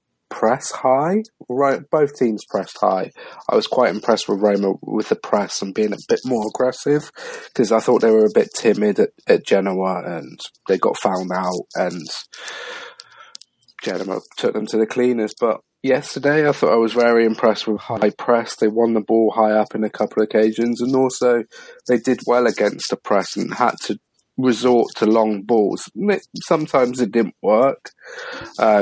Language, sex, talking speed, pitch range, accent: English, male, 180 wpm, 105-125 Hz, British